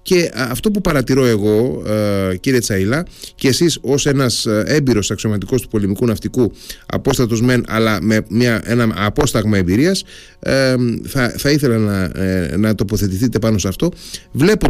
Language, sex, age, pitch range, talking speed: Greek, male, 30-49, 115-150 Hz, 150 wpm